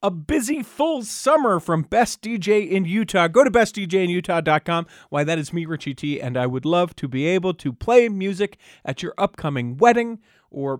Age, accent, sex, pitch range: 40-59, American, male, 150-205 Hz